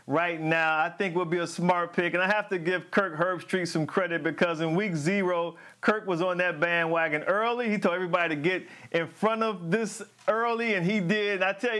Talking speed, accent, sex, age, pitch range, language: 225 wpm, American, male, 40-59, 195-265 Hz, English